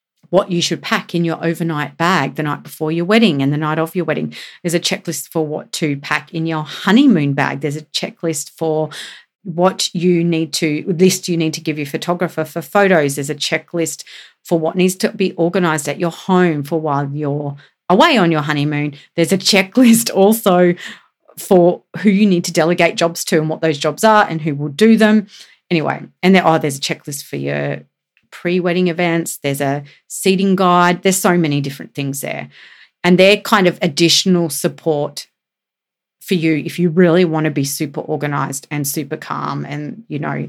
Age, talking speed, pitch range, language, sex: 40-59, 195 wpm, 150-180 Hz, English, female